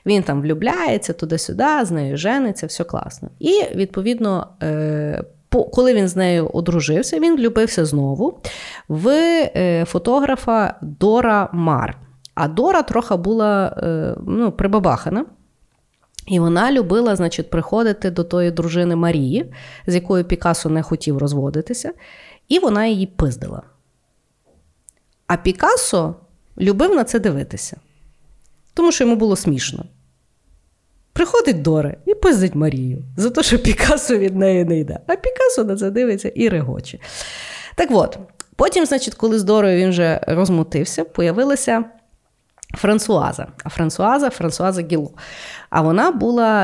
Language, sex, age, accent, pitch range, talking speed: Ukrainian, female, 30-49, native, 160-225 Hz, 125 wpm